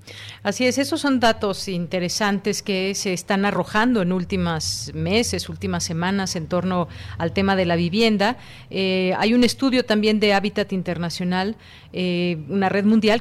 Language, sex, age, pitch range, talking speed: Spanish, female, 40-59, 175-205 Hz, 155 wpm